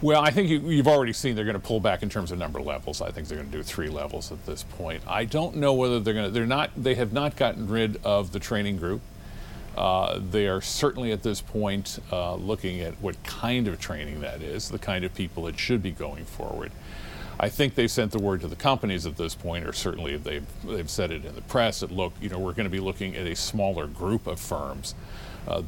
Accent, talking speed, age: American, 250 wpm, 50-69